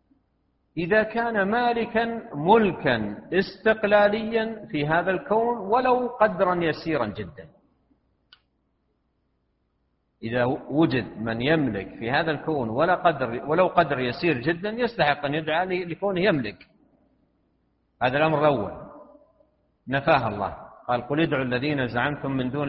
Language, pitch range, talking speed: Arabic, 130-190 Hz, 110 wpm